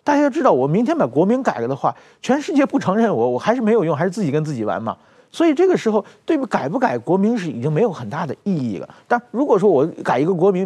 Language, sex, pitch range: Chinese, male, 150-240 Hz